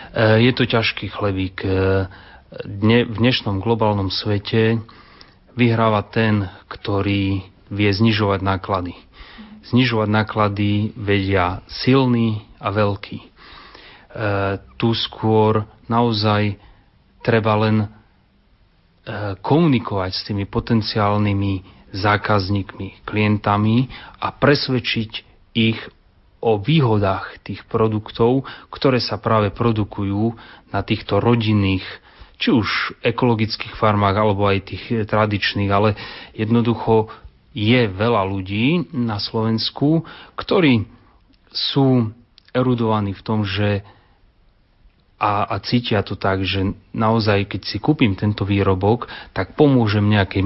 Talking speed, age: 95 wpm, 30-49